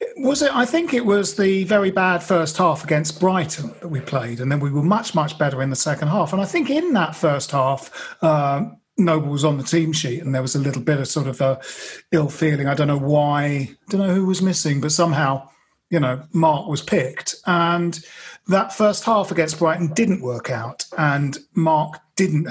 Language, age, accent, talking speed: English, 40-59, British, 220 wpm